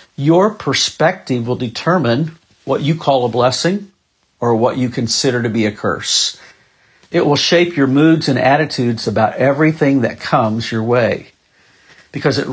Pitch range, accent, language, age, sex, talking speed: 120-140 Hz, American, English, 50-69, male, 155 wpm